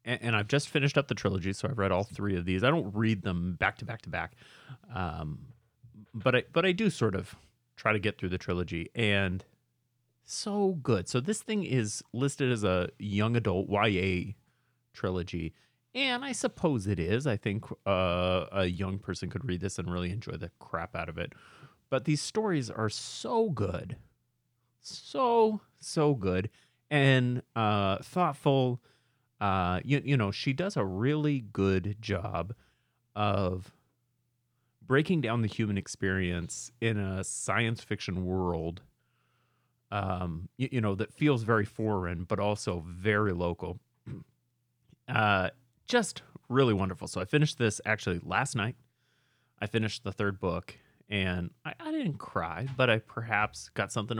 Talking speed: 160 wpm